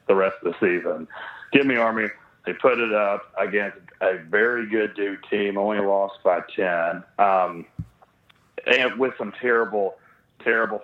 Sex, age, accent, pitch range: male, 40-59, American, 100-120 Hz